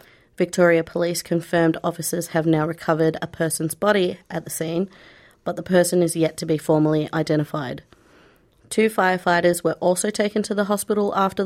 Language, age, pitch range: English, 30-49, 165-185 Hz